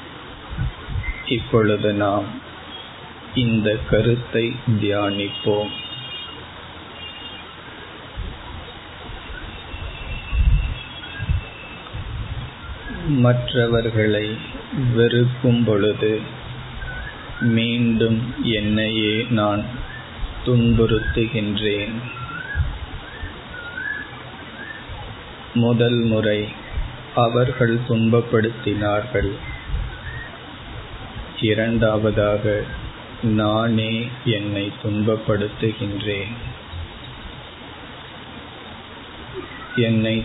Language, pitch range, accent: Tamil, 105-120 Hz, native